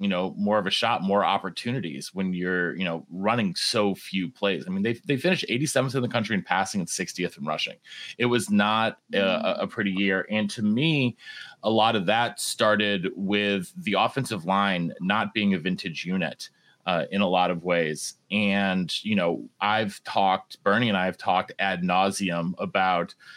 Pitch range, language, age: 95-130 Hz, English, 30-49